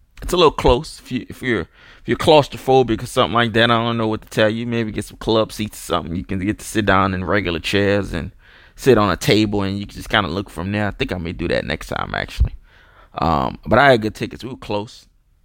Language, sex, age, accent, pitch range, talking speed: English, male, 20-39, American, 95-115 Hz, 270 wpm